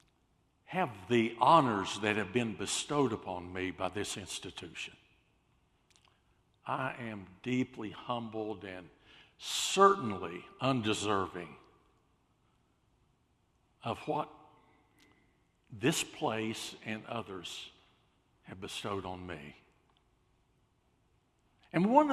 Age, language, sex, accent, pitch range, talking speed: 60-79, English, male, American, 100-135 Hz, 85 wpm